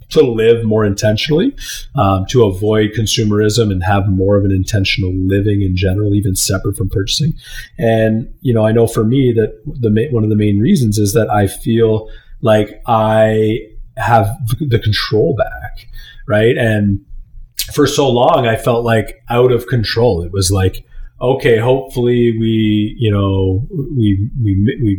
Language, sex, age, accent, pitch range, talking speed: English, male, 30-49, American, 105-125 Hz, 160 wpm